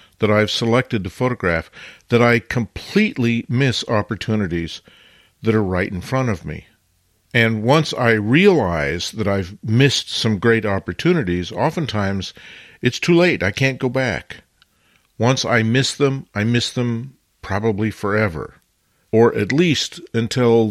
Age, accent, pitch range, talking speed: 50-69, American, 100-125 Hz, 140 wpm